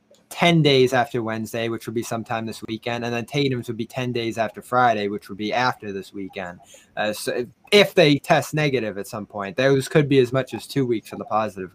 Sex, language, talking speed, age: male, English, 225 wpm, 20-39